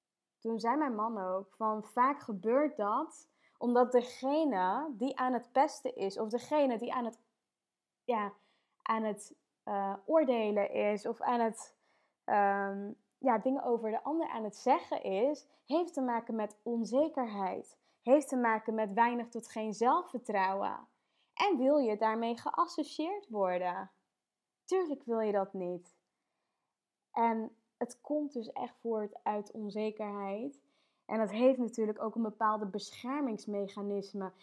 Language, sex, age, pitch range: Dutch, female, 20-39, 215-265 Hz